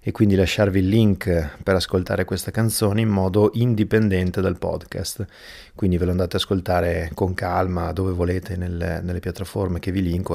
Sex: male